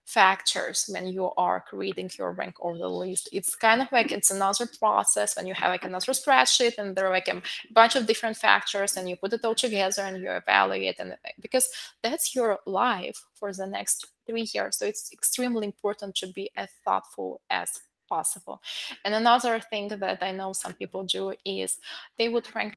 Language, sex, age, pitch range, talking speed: English, female, 20-39, 195-230 Hz, 195 wpm